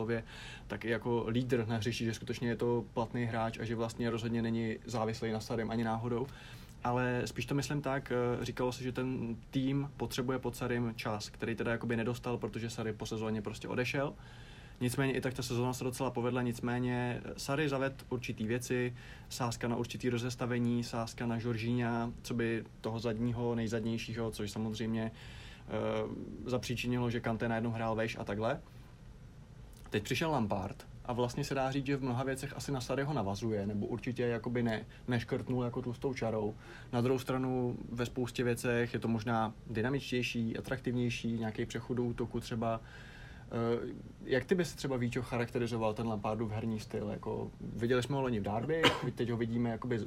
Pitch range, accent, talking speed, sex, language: 115-125 Hz, native, 170 wpm, male, Czech